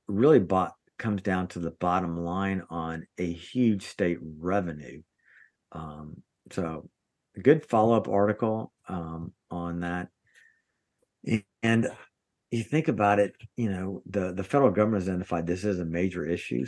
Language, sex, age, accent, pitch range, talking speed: English, male, 50-69, American, 90-110 Hz, 145 wpm